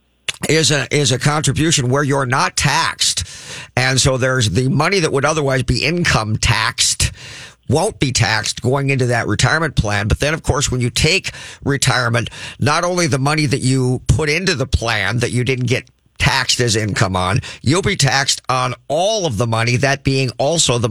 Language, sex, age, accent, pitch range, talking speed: English, male, 50-69, American, 115-145 Hz, 190 wpm